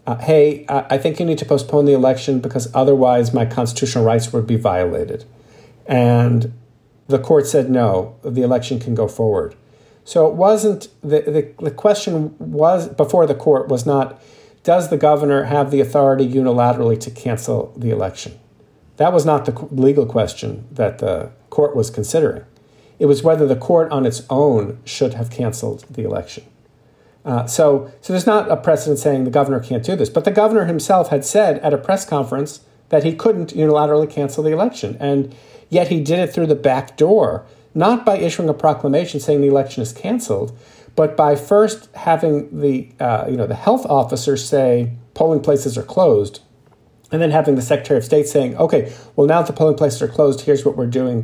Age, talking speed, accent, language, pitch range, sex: 50-69, 190 wpm, American, English, 120-155 Hz, male